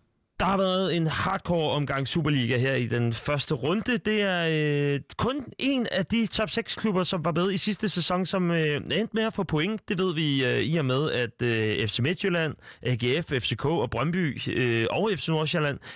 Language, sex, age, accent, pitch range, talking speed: Danish, male, 30-49, native, 130-175 Hz, 200 wpm